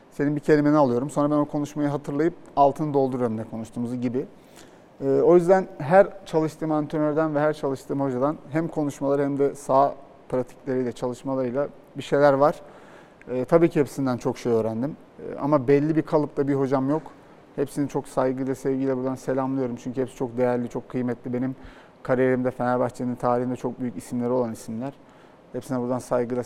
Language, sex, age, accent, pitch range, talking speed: Turkish, male, 40-59, native, 125-145 Hz, 165 wpm